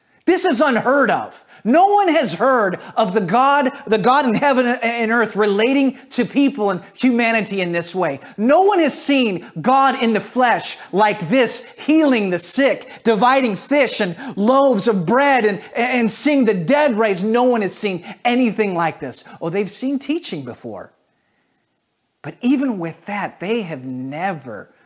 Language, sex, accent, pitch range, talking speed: English, male, American, 155-255 Hz, 165 wpm